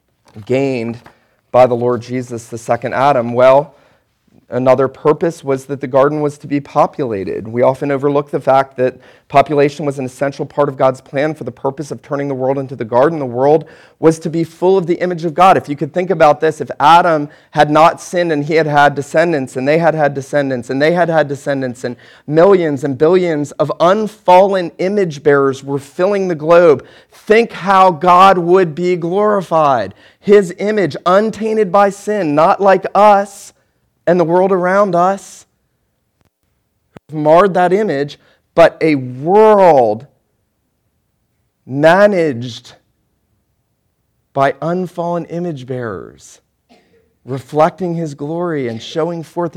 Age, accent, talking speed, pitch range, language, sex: 40-59, American, 155 wpm, 130-175 Hz, English, male